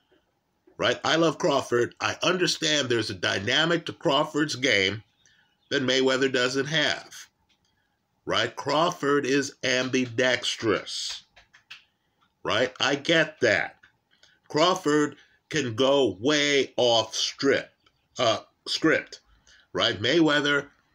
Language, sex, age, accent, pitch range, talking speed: English, male, 50-69, American, 120-145 Hz, 95 wpm